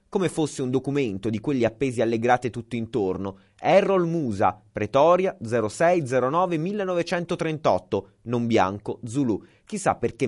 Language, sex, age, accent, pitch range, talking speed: Italian, male, 30-49, native, 115-175 Hz, 115 wpm